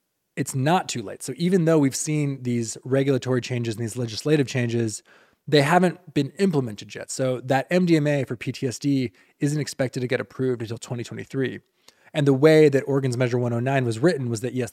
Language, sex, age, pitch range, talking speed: English, male, 20-39, 120-150 Hz, 185 wpm